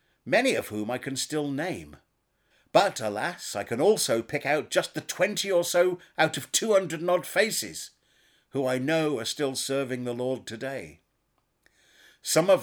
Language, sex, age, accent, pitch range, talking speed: English, male, 50-69, British, 135-180 Hz, 170 wpm